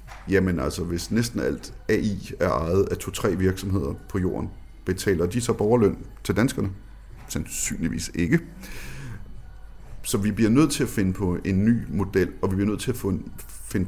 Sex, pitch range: male, 95-115 Hz